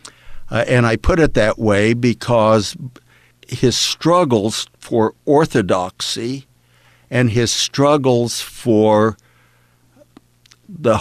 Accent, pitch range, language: American, 105-130 Hz, English